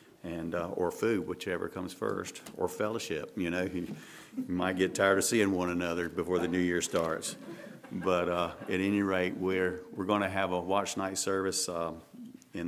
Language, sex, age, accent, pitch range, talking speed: English, male, 40-59, American, 90-100 Hz, 195 wpm